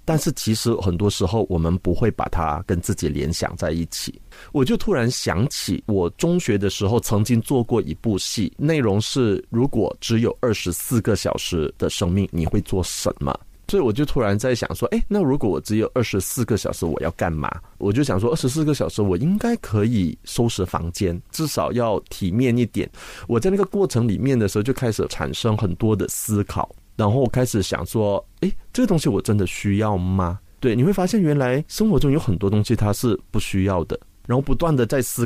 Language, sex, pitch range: Chinese, male, 95-135 Hz